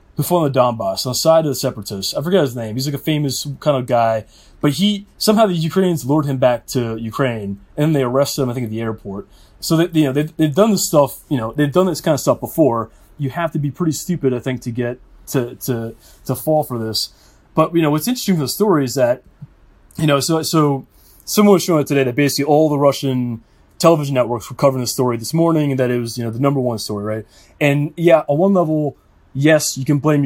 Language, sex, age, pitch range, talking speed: English, male, 20-39, 120-155 Hz, 245 wpm